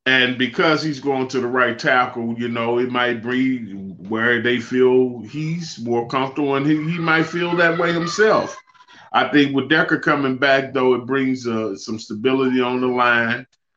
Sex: male